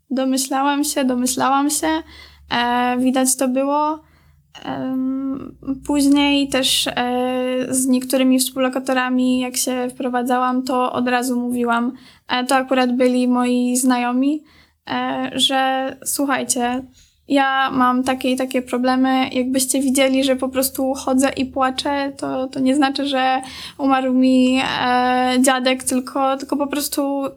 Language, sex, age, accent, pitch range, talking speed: Polish, female, 10-29, native, 255-280 Hz, 115 wpm